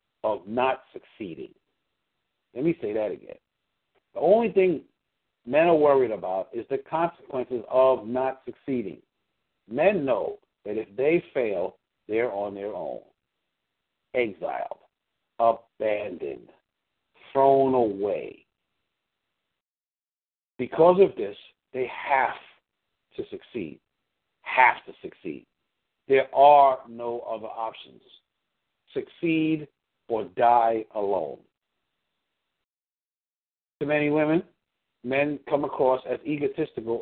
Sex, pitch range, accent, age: male, 130-190 Hz, American, 60-79